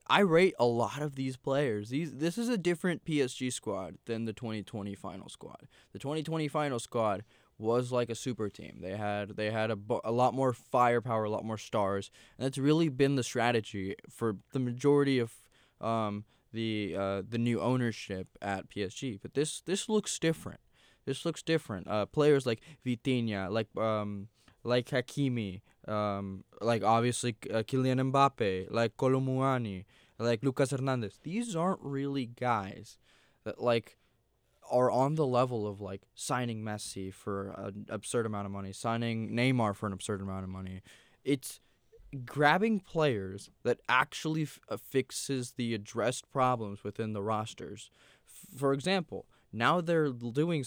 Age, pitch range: 20-39, 105-135 Hz